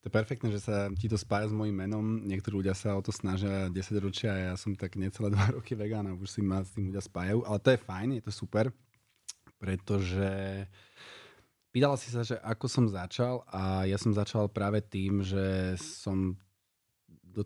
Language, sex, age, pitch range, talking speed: Slovak, male, 30-49, 95-110 Hz, 205 wpm